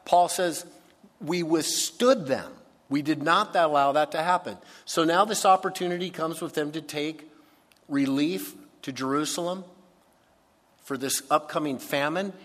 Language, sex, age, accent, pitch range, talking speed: English, male, 50-69, American, 135-180 Hz, 135 wpm